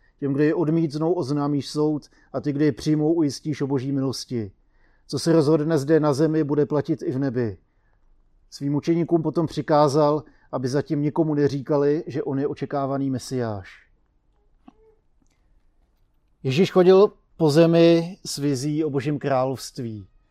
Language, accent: Czech, native